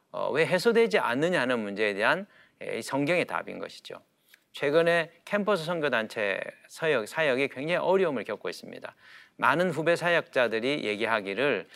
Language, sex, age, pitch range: Korean, male, 40-59, 145-205 Hz